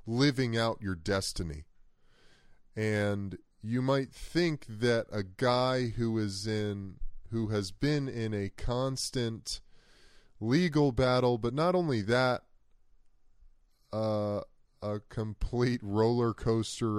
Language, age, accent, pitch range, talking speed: English, 20-39, American, 85-115 Hz, 110 wpm